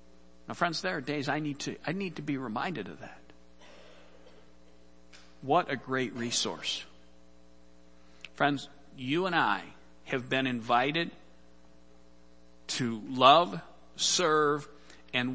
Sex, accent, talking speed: male, American, 115 wpm